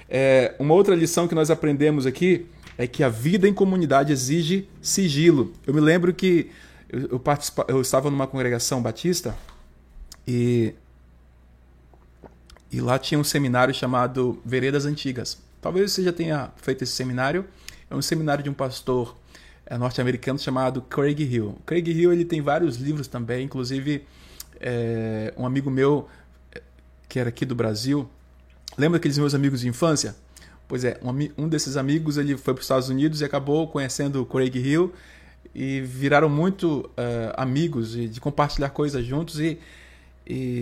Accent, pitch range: Brazilian, 120-155 Hz